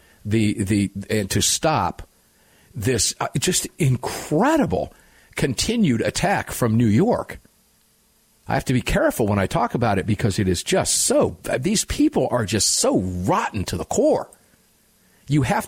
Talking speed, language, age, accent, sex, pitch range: 150 wpm, English, 50-69, American, male, 110-160 Hz